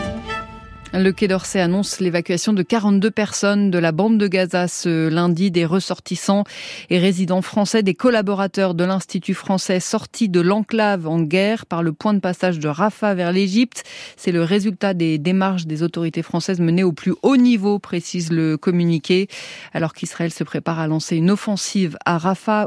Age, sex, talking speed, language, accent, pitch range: 30-49, female, 170 wpm, French, French, 175-210 Hz